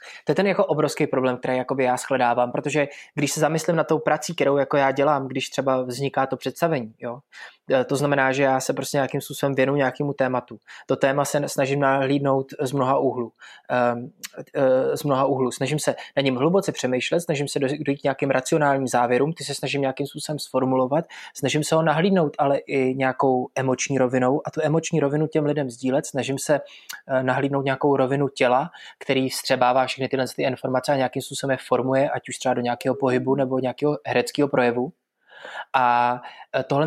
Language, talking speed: Czech, 180 wpm